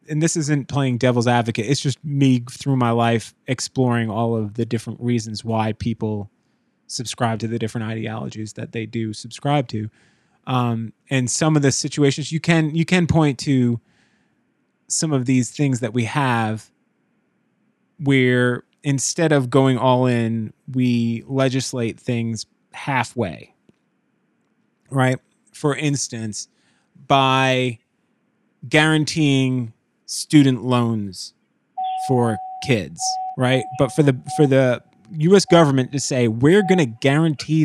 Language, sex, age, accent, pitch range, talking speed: English, male, 20-39, American, 120-155 Hz, 130 wpm